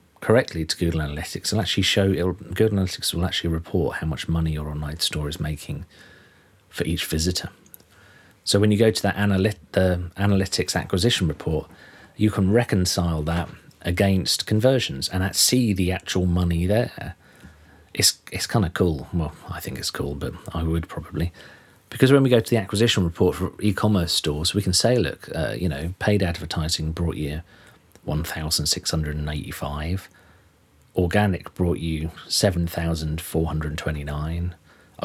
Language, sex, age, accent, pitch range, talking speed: English, male, 40-59, British, 80-100 Hz, 150 wpm